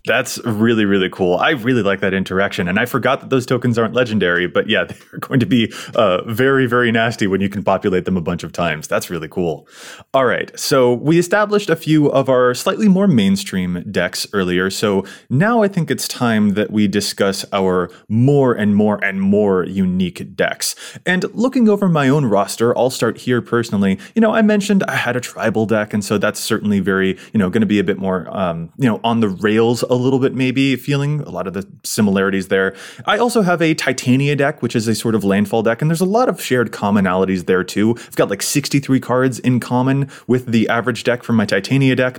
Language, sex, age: English, male, 20-39